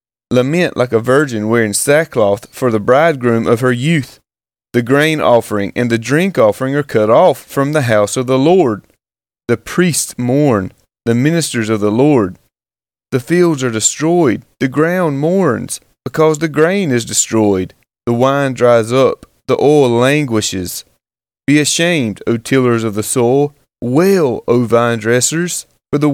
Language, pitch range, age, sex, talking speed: English, 115-155 Hz, 30-49, male, 155 wpm